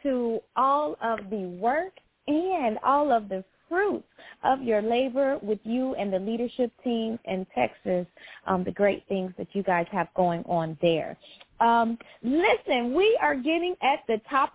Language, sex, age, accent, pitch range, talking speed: English, female, 30-49, American, 225-310 Hz, 165 wpm